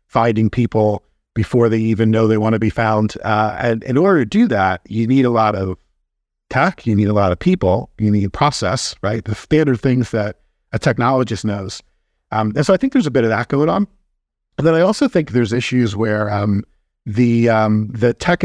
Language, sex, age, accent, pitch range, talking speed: English, male, 50-69, American, 100-130 Hz, 220 wpm